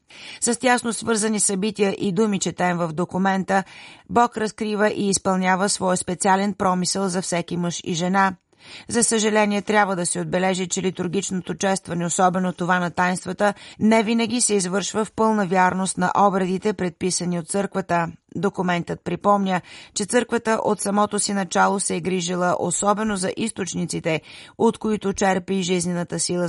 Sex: female